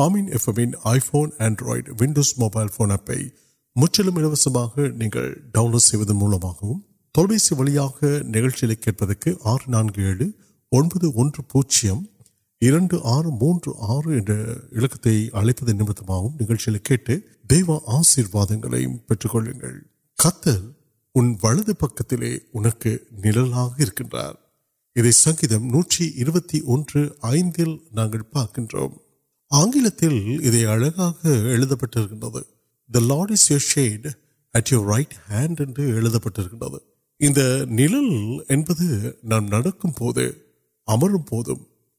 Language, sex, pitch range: Urdu, male, 110-150 Hz